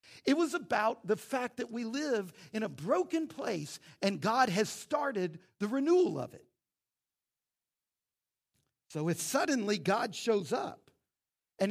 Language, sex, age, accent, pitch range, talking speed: English, male, 50-69, American, 200-280 Hz, 140 wpm